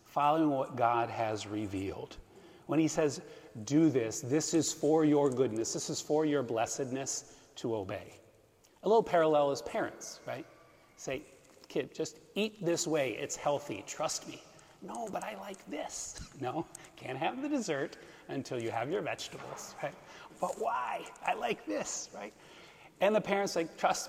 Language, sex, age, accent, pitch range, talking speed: English, male, 30-49, American, 140-170 Hz, 165 wpm